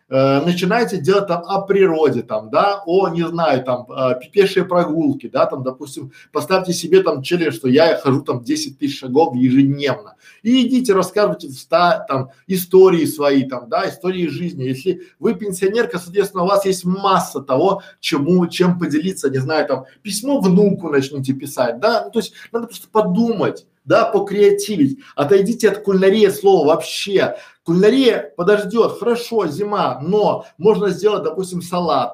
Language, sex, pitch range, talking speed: Russian, male, 145-205 Hz, 150 wpm